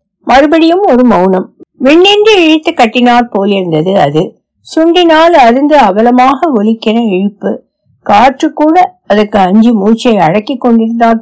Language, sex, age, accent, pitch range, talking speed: Tamil, female, 50-69, native, 185-260 Hz, 110 wpm